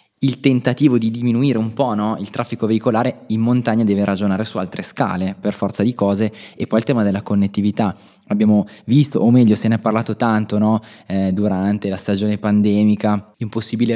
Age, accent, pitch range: 20-39, native, 105-120 Hz